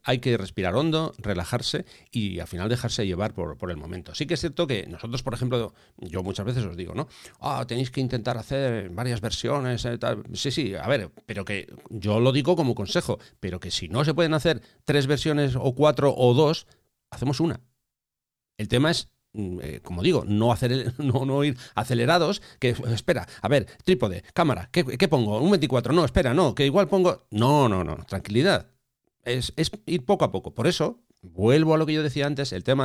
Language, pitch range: English, 110-145 Hz